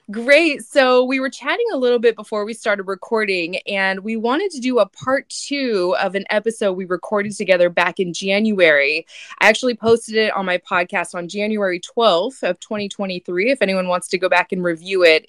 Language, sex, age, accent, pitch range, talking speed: English, female, 20-39, American, 185-235 Hz, 195 wpm